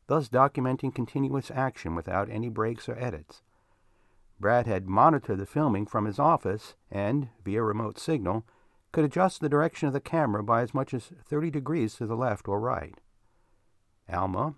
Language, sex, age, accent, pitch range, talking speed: English, male, 60-79, American, 105-140 Hz, 165 wpm